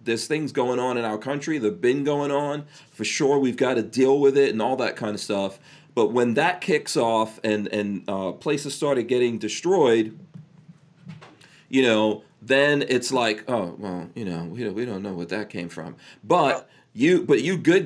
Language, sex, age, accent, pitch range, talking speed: English, male, 40-59, American, 110-155 Hz, 195 wpm